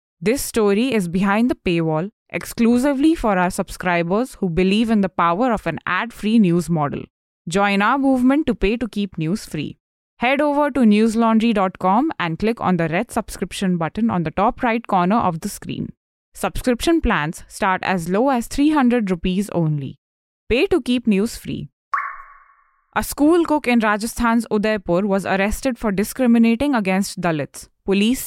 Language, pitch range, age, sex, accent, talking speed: English, 185-230 Hz, 20-39, female, Indian, 160 wpm